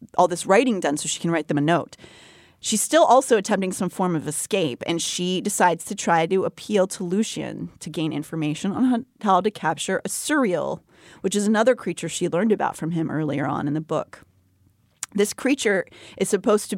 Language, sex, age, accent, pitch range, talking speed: English, female, 30-49, American, 165-220 Hz, 200 wpm